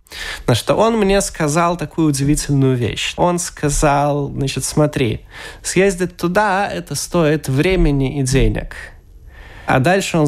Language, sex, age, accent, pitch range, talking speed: Russian, male, 20-39, native, 125-165 Hz, 135 wpm